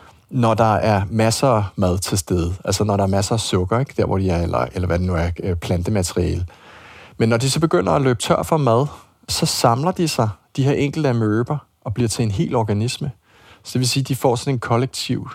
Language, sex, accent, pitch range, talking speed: Danish, male, native, 105-130 Hz, 235 wpm